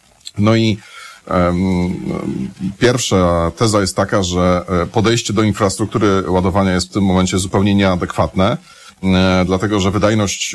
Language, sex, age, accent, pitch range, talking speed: Polish, male, 30-49, native, 95-115 Hz, 115 wpm